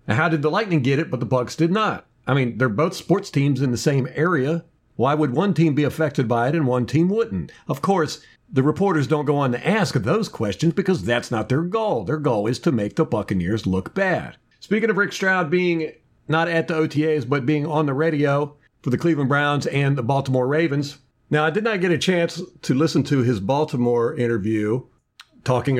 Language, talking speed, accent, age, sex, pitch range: English, 220 wpm, American, 50-69, male, 125-165 Hz